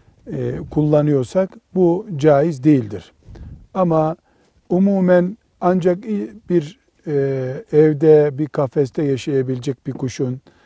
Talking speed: 80 wpm